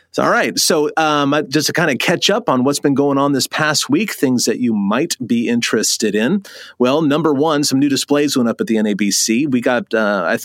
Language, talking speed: English, 230 wpm